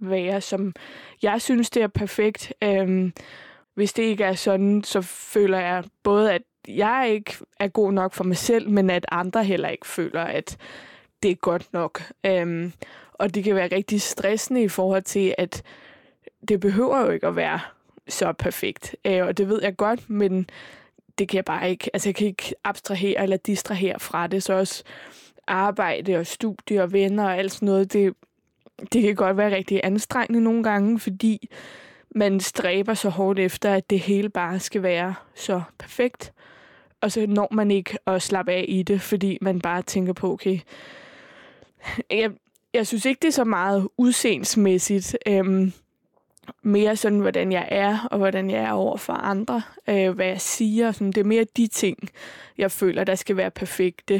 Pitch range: 190-215 Hz